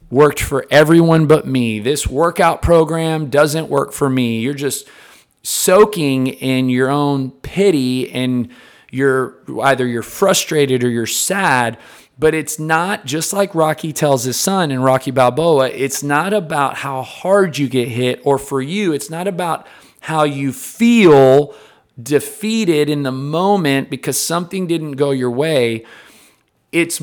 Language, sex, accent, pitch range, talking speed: English, male, American, 120-155 Hz, 150 wpm